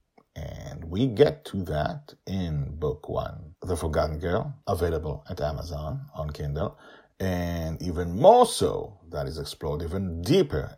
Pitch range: 75-95 Hz